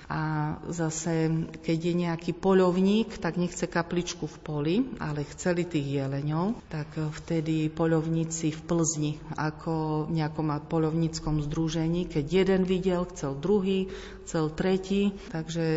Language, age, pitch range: Slovak, 40-59, 160-185 Hz